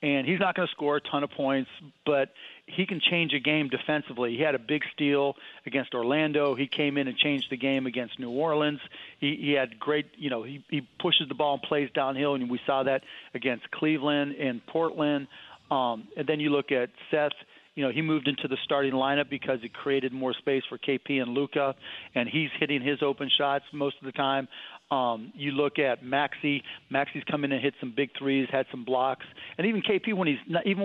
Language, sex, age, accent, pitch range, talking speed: English, male, 40-59, American, 135-150 Hz, 225 wpm